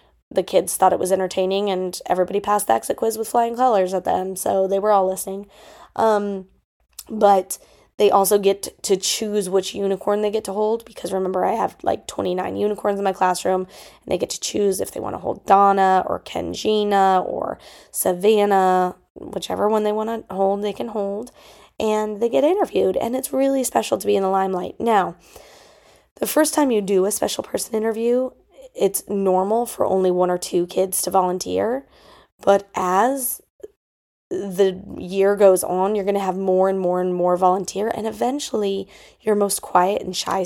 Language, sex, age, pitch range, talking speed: English, female, 20-39, 190-220 Hz, 185 wpm